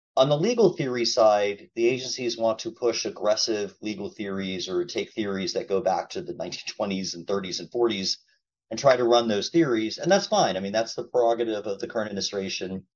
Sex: male